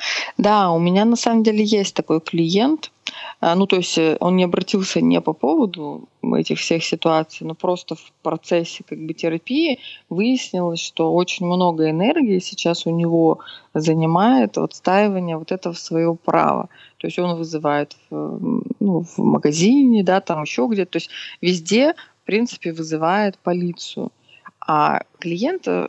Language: Russian